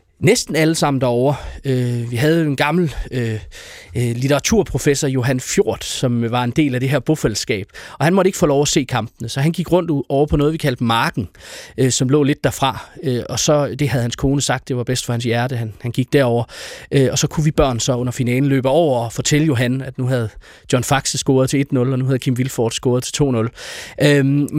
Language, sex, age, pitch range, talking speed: Danish, male, 30-49, 125-155 Hz, 210 wpm